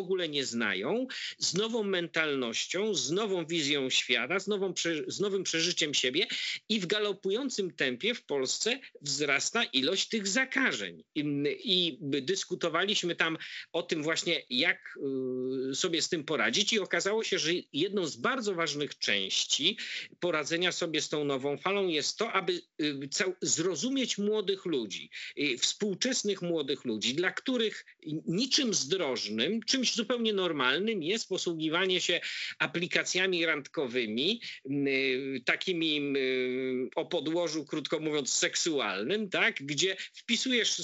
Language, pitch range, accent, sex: Polish, 160-210 Hz, native, male